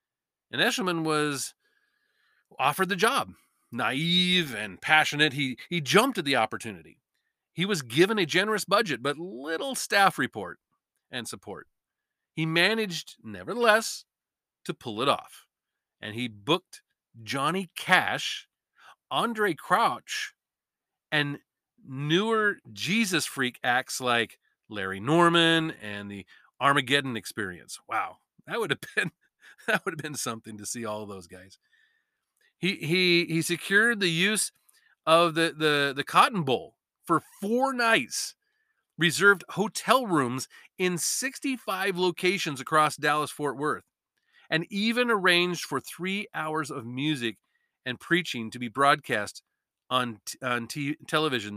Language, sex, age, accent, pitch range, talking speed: English, male, 40-59, American, 130-190 Hz, 130 wpm